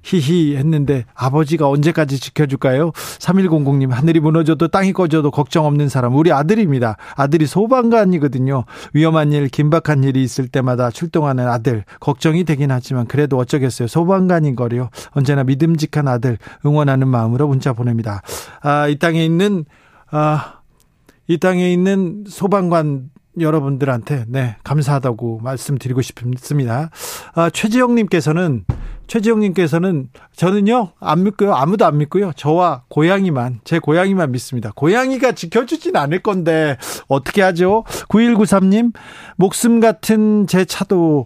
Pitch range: 140-190 Hz